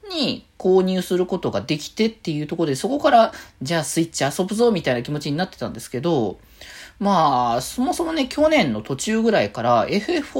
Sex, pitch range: male, 125-205 Hz